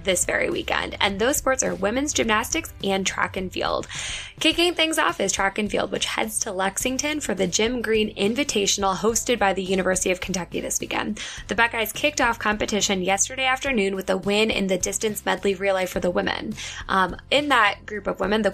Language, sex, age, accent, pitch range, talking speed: English, female, 10-29, American, 190-225 Hz, 200 wpm